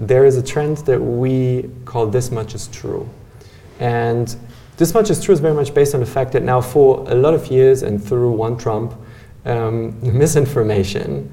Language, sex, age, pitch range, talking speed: English, male, 20-39, 110-140 Hz, 190 wpm